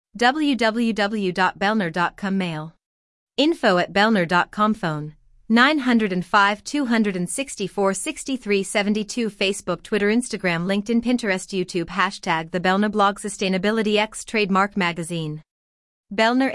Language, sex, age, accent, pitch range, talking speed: English, female, 30-49, American, 180-235 Hz, 85 wpm